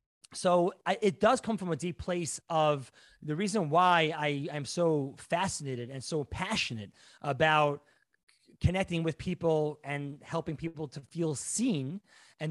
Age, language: 30-49, English